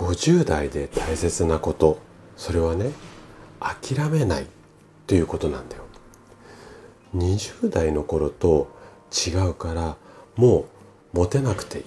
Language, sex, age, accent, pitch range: Japanese, male, 40-59, native, 80-110 Hz